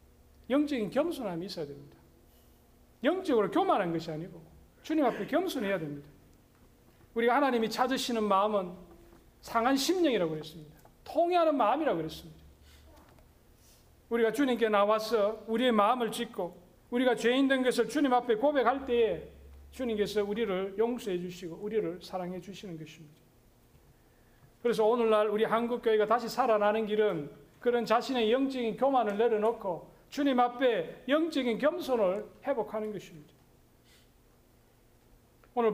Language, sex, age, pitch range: Korean, male, 40-59, 190-255 Hz